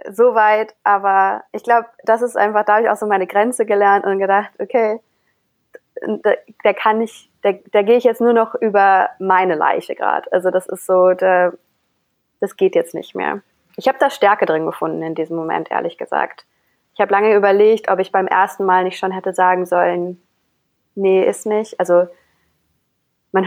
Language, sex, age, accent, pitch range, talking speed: German, female, 20-39, German, 185-220 Hz, 185 wpm